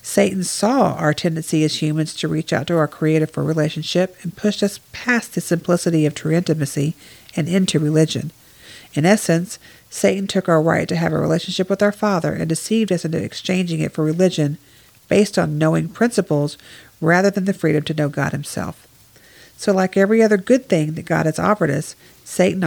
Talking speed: 190 wpm